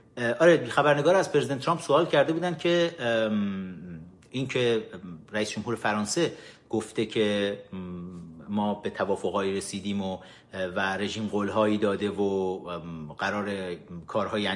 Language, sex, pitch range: Persian, male, 100-150 Hz